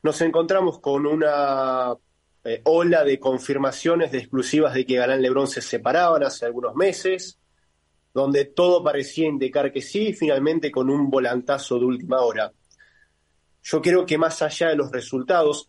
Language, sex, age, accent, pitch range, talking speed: Spanish, male, 20-39, Argentinian, 130-170 Hz, 160 wpm